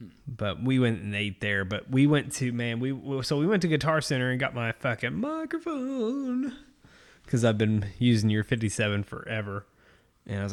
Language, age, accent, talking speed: English, 20-39, American, 190 wpm